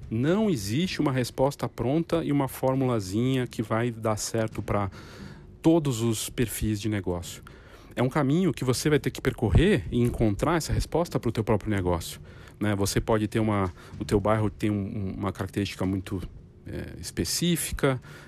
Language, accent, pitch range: Portuguese, Brazilian, 105-140 Hz